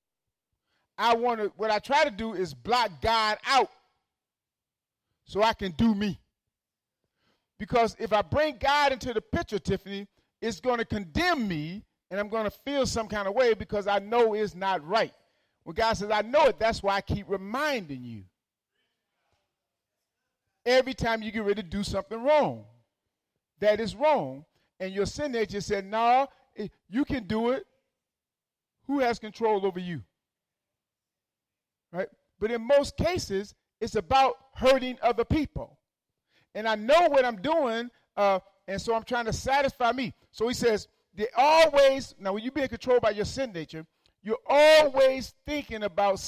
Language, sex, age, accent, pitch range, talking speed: English, male, 40-59, American, 195-245 Hz, 165 wpm